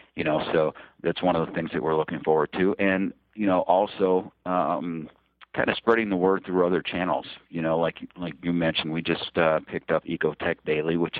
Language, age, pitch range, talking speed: English, 50-69, 80-95 Hz, 215 wpm